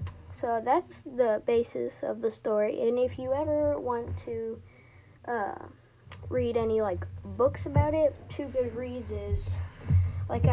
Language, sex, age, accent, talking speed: English, female, 20-39, American, 140 wpm